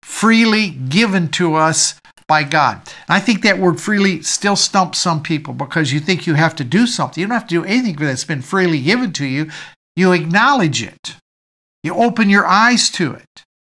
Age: 50-69